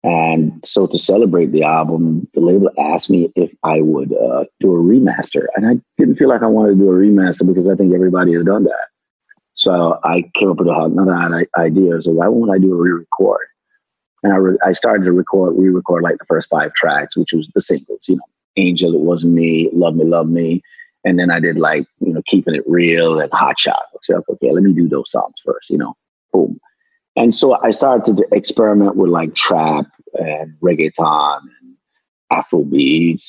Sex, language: male, English